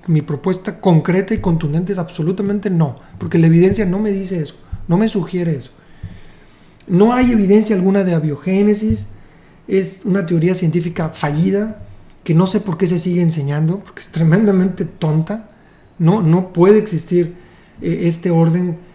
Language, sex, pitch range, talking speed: Spanish, male, 165-205 Hz, 155 wpm